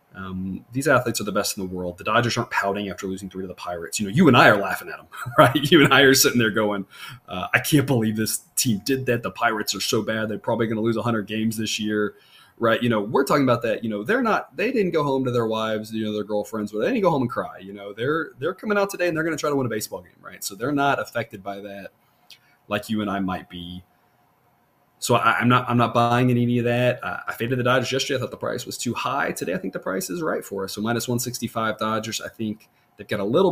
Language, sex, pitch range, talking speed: English, male, 100-125 Hz, 285 wpm